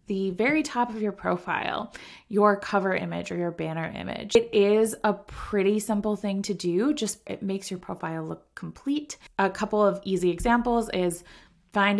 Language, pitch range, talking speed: English, 175-215 Hz, 175 wpm